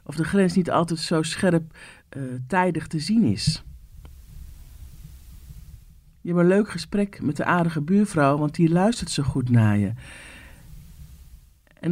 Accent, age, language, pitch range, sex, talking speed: Dutch, 50-69, Dutch, 105-170 Hz, male, 145 wpm